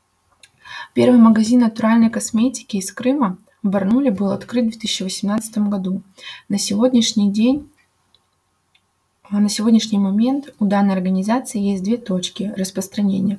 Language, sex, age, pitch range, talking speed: Russian, female, 20-39, 195-230 Hz, 115 wpm